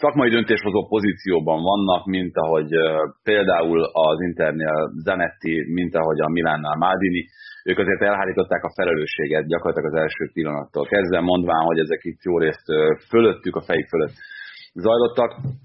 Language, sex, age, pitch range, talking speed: Hungarian, male, 30-49, 85-120 Hz, 140 wpm